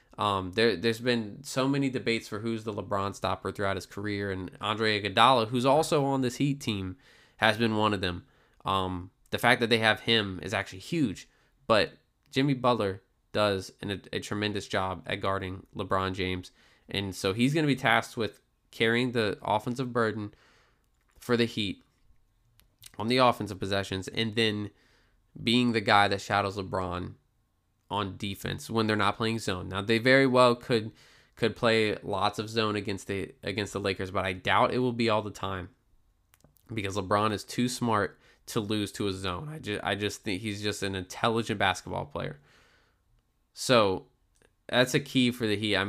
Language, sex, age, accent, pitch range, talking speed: English, male, 20-39, American, 100-115 Hz, 180 wpm